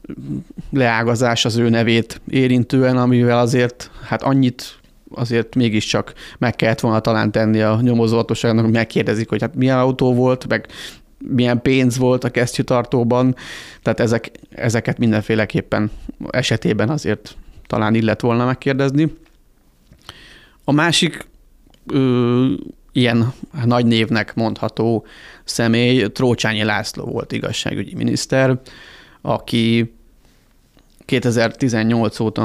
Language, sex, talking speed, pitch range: Hungarian, male, 105 wpm, 110-130 Hz